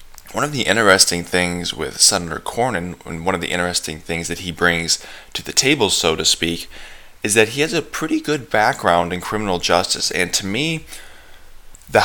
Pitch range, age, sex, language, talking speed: 85-110 Hz, 20-39, male, English, 190 wpm